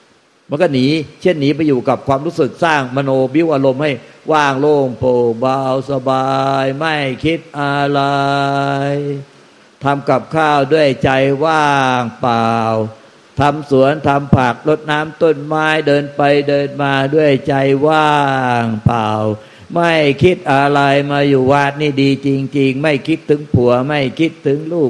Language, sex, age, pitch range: Thai, male, 60-79, 135-150 Hz